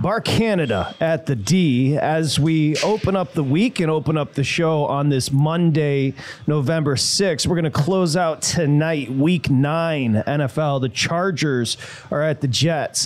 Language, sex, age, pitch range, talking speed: English, male, 30-49, 135-165 Hz, 165 wpm